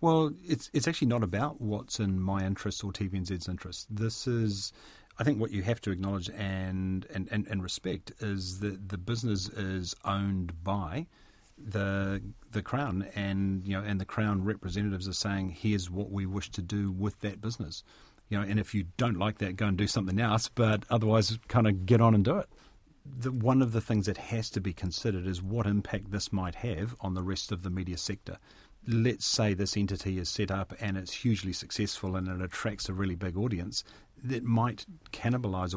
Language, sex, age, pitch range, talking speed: English, male, 40-59, 95-110 Hz, 205 wpm